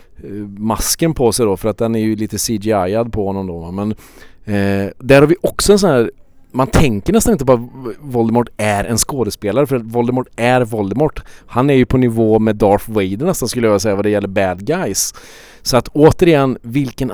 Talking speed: 205 wpm